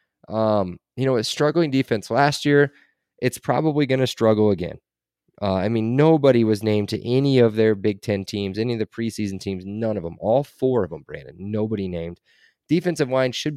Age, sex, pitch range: 20-39, male, 100-130 Hz